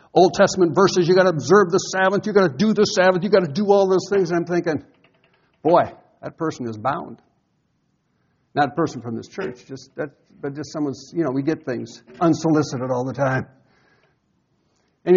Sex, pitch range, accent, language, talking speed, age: male, 135-200 Hz, American, English, 200 wpm, 60-79